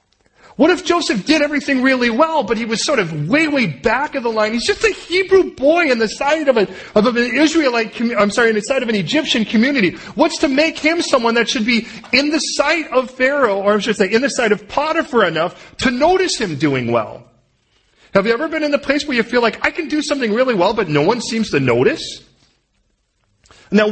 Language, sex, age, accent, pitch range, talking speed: English, male, 40-59, American, 205-300 Hz, 230 wpm